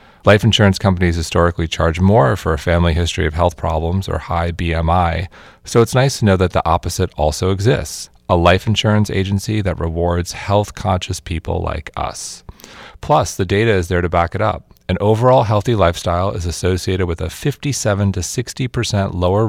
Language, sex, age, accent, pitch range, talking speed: English, male, 30-49, American, 90-120 Hz, 175 wpm